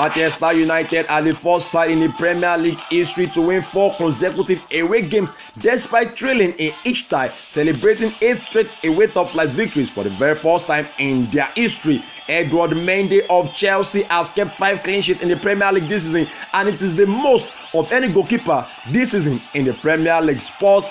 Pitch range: 155-200 Hz